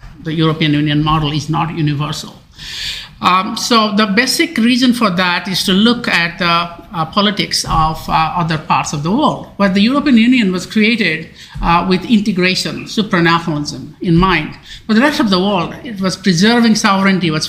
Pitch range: 170-220 Hz